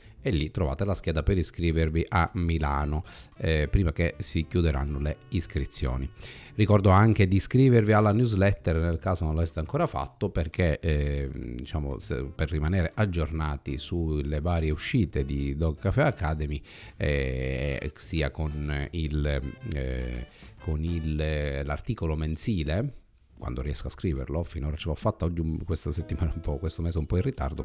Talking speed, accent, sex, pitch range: 150 wpm, native, male, 75-100 Hz